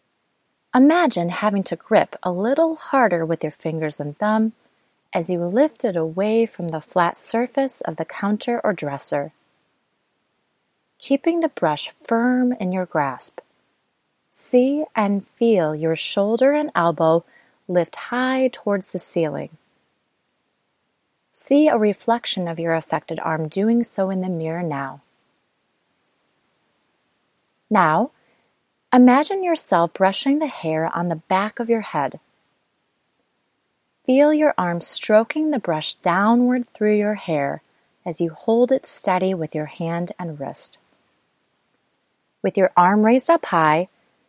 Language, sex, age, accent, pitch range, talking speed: English, female, 30-49, American, 165-245 Hz, 130 wpm